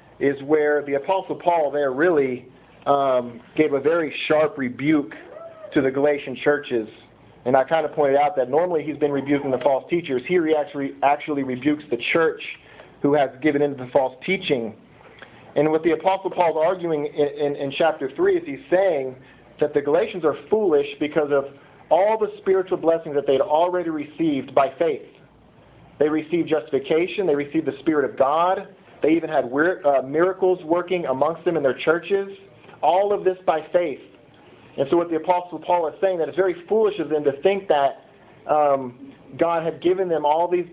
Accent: American